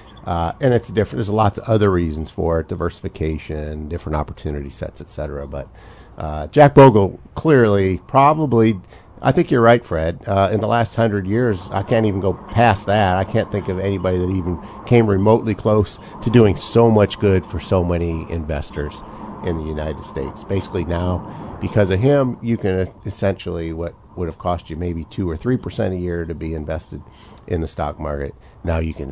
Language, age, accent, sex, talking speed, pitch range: English, 50-69, American, male, 190 wpm, 85-105 Hz